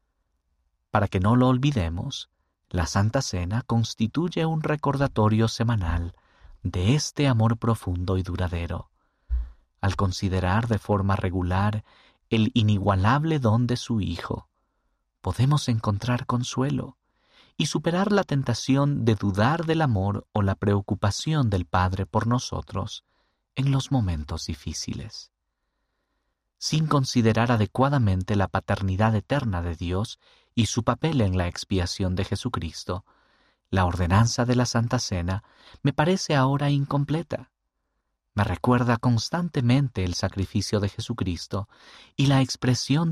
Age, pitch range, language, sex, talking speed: 50-69, 95-125 Hz, Spanish, male, 120 wpm